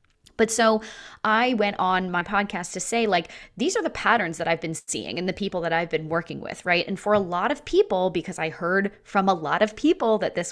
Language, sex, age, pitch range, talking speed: English, female, 20-39, 175-225 Hz, 245 wpm